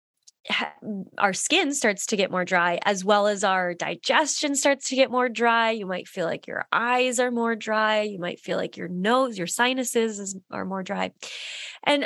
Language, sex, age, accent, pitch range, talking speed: English, female, 20-39, American, 185-230 Hz, 190 wpm